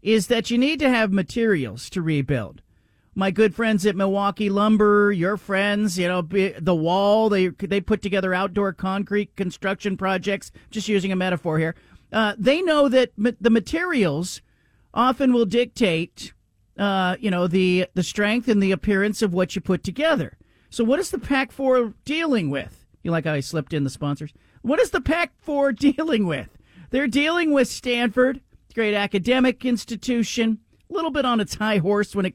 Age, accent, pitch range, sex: 40-59, American, 180-235 Hz, male